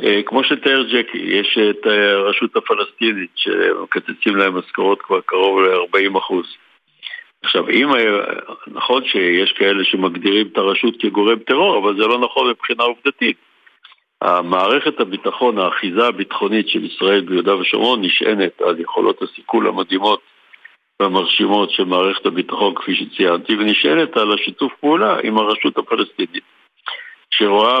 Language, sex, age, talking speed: Hebrew, male, 60-79, 125 wpm